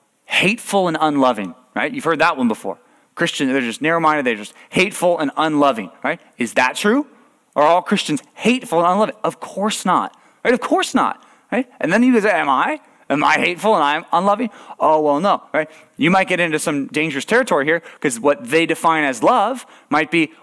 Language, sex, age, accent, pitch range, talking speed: English, male, 30-49, American, 140-200 Hz, 200 wpm